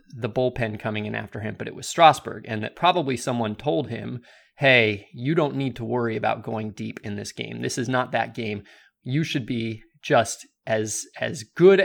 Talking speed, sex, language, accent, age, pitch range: 205 wpm, male, English, American, 30-49, 110-140 Hz